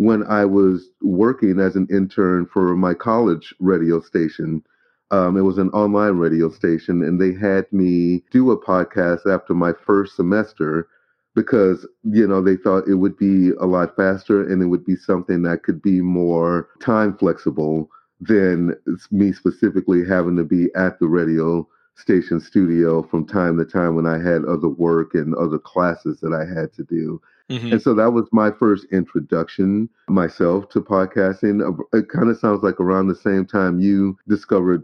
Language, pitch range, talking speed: English, 90-105 Hz, 175 wpm